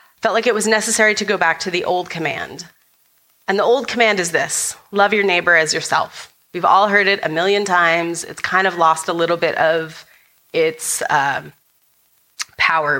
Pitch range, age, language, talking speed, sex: 160-220 Hz, 30-49, English, 190 wpm, female